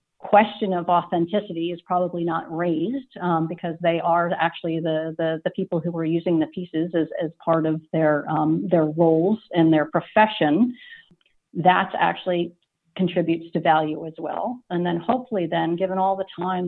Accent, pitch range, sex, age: American, 165-200 Hz, female, 40-59